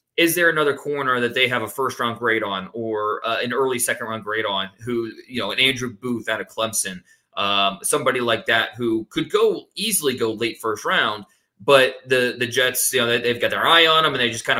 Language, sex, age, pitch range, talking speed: English, male, 20-39, 120-155 Hz, 235 wpm